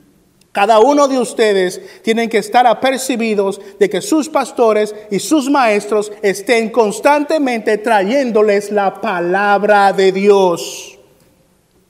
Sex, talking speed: male, 110 wpm